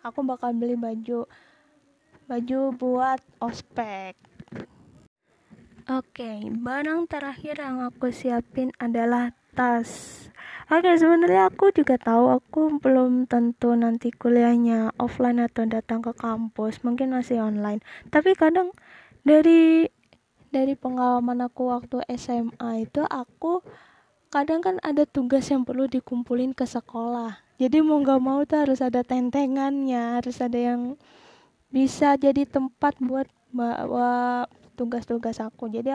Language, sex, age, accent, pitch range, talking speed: Indonesian, female, 20-39, native, 240-285 Hz, 120 wpm